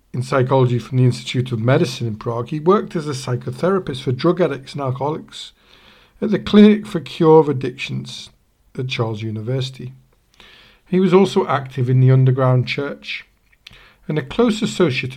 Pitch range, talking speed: 125-170 Hz, 160 wpm